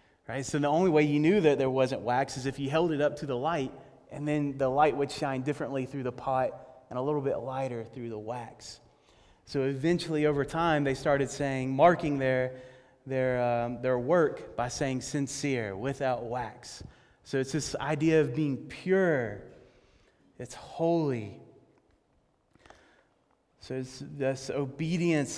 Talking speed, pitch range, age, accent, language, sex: 165 wpm, 125-145 Hz, 30-49, American, English, male